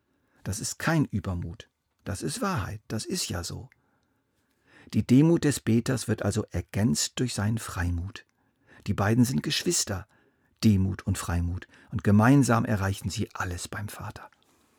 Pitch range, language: 100-120 Hz, German